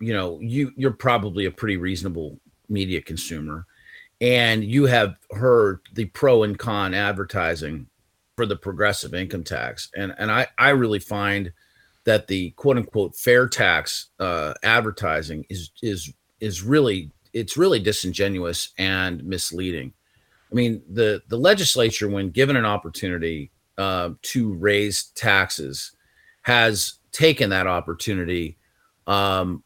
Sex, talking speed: male, 130 wpm